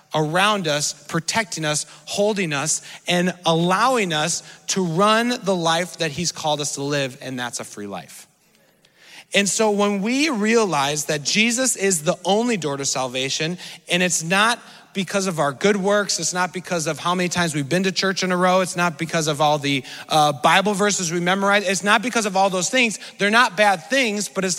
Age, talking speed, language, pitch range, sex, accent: 30-49, 205 wpm, English, 160-210 Hz, male, American